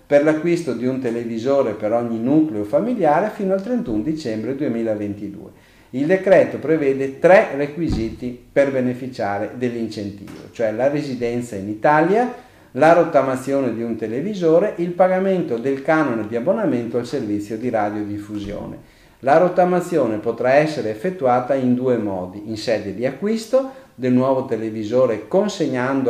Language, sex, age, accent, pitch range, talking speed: Italian, male, 50-69, native, 110-155 Hz, 135 wpm